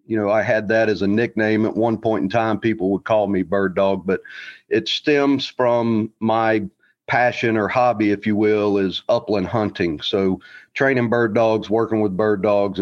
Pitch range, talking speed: 100-115 Hz, 190 wpm